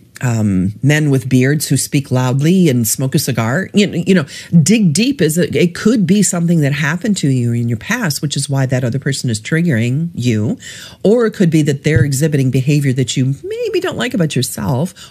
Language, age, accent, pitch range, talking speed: English, 50-69, American, 125-170 Hz, 210 wpm